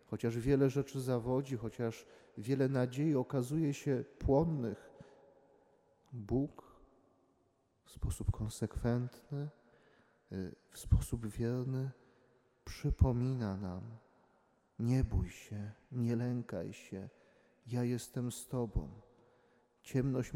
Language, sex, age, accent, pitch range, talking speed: Polish, male, 30-49, native, 115-140 Hz, 90 wpm